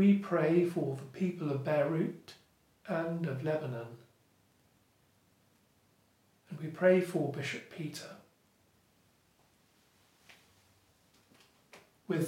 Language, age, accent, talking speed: English, 40-59, British, 85 wpm